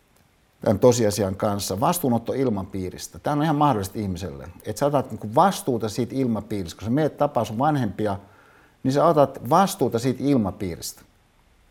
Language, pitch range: Finnish, 105-145 Hz